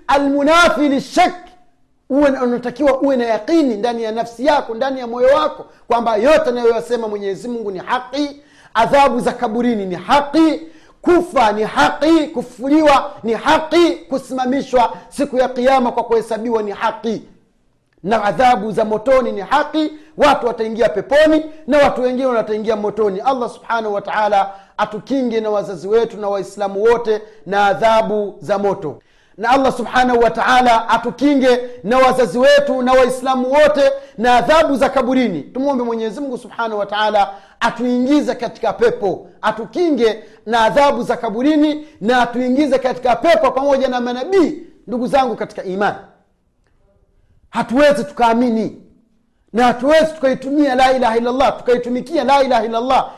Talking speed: 140 wpm